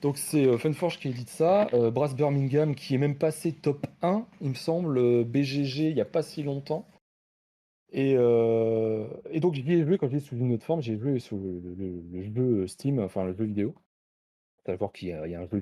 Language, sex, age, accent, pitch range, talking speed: French, male, 30-49, French, 105-140 Hz, 240 wpm